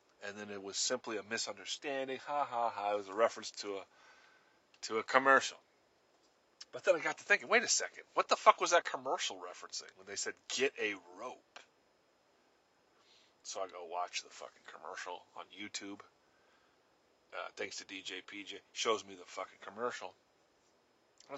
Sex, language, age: male, English, 30-49